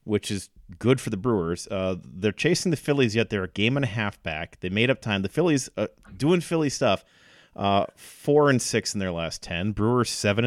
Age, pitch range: 30-49, 95-120 Hz